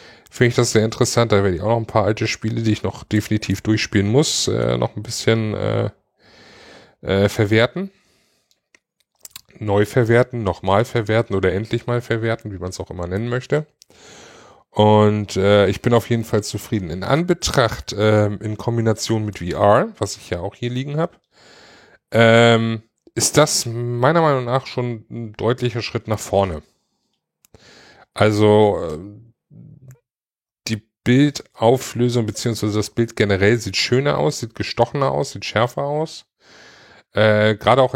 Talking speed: 150 wpm